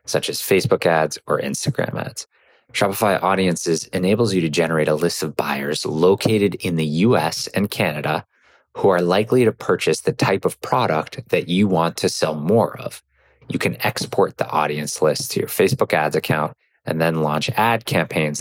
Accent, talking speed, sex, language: American, 180 wpm, male, English